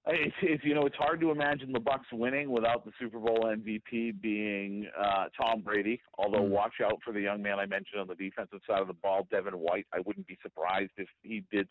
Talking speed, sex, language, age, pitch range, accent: 230 wpm, male, English, 40-59, 100-120 Hz, American